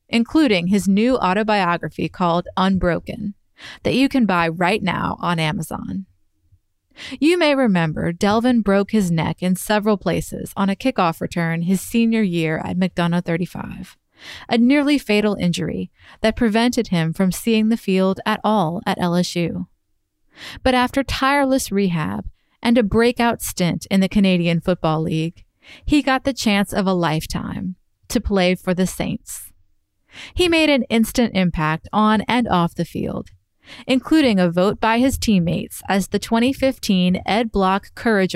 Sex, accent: female, American